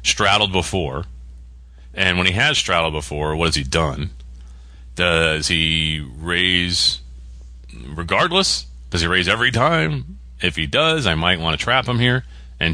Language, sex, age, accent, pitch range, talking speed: English, male, 30-49, American, 65-95 Hz, 150 wpm